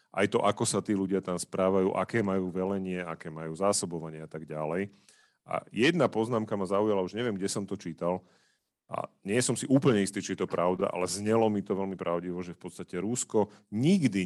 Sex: male